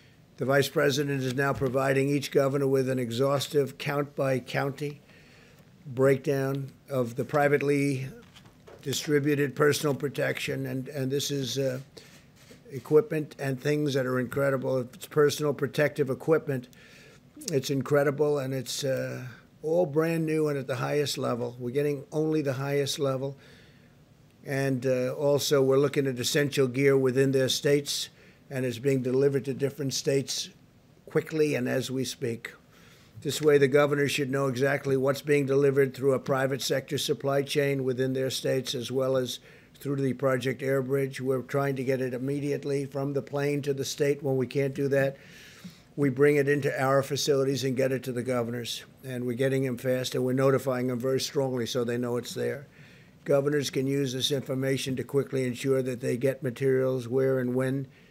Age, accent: 50-69, American